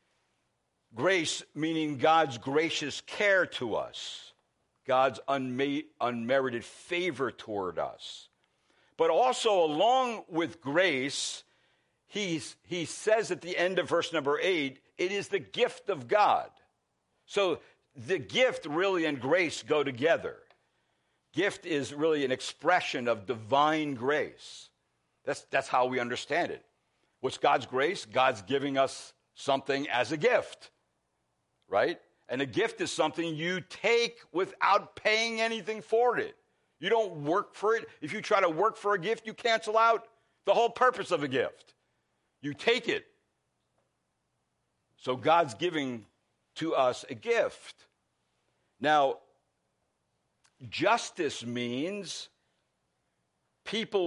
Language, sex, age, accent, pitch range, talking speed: English, male, 60-79, American, 130-215 Hz, 125 wpm